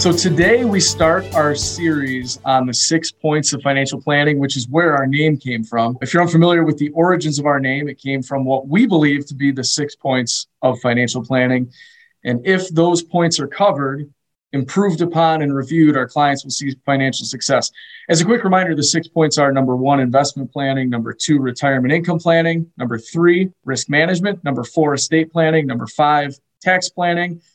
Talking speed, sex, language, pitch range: 190 wpm, male, English, 130-165 Hz